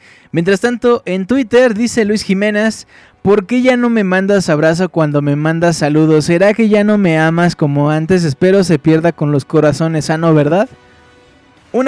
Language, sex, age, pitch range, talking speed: Spanish, male, 20-39, 150-200 Hz, 180 wpm